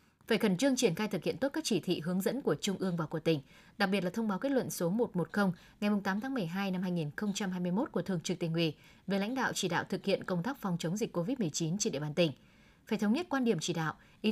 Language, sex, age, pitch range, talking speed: Vietnamese, female, 20-39, 175-230 Hz, 270 wpm